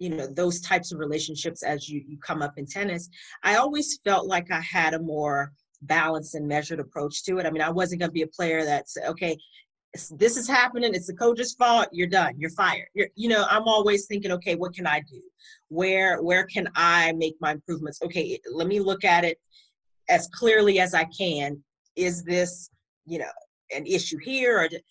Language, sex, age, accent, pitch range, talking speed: English, female, 40-59, American, 155-210 Hz, 205 wpm